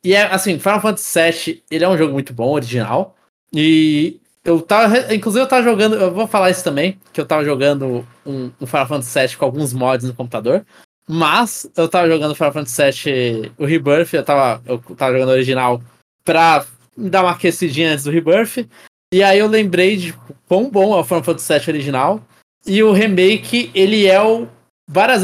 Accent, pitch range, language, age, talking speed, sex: Brazilian, 140-185 Hz, Portuguese, 20-39, 205 wpm, male